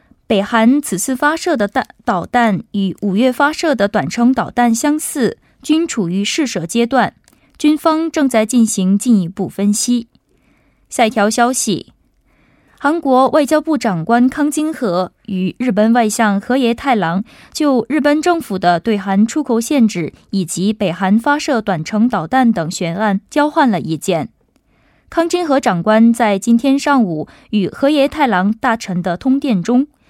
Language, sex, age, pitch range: Korean, female, 20-39, 200-270 Hz